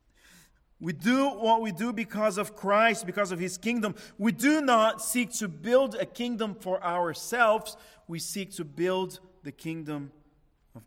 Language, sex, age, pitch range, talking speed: English, male, 50-69, 165-210 Hz, 160 wpm